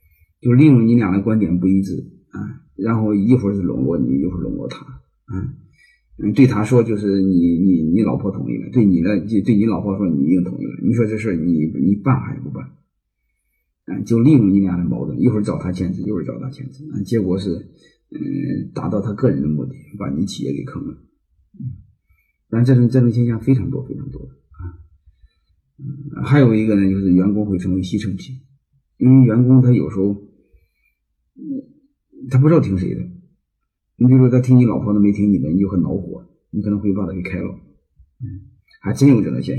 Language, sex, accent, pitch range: Chinese, male, native, 95-130 Hz